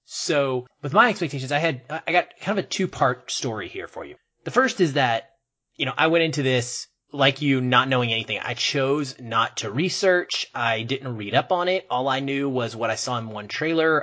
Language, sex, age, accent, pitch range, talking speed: English, male, 30-49, American, 120-150 Hz, 225 wpm